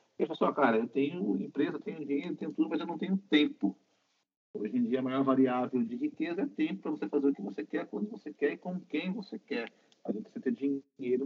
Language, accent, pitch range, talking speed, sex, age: Portuguese, Brazilian, 120-180 Hz, 265 wpm, male, 40-59